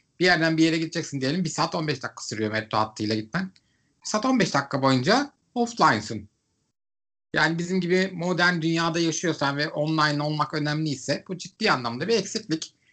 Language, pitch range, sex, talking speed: Turkish, 125-180 Hz, male, 165 wpm